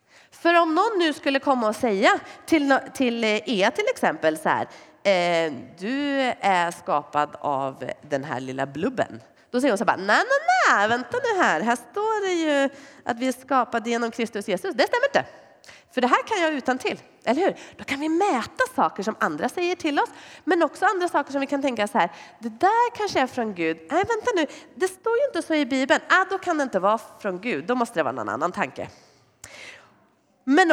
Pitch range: 210-335 Hz